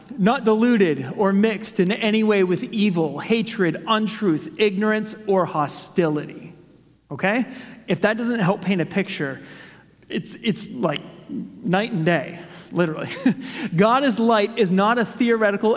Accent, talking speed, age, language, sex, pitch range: American, 135 wpm, 30-49, English, male, 170-215 Hz